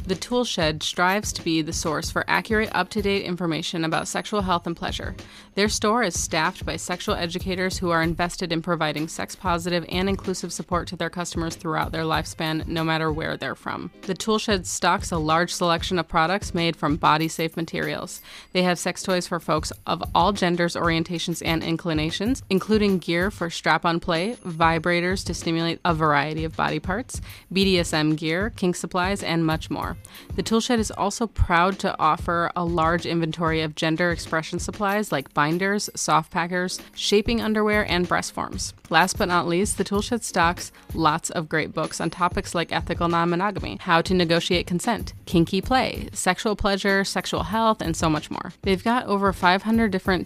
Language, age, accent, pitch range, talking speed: English, 30-49, American, 165-190 Hz, 175 wpm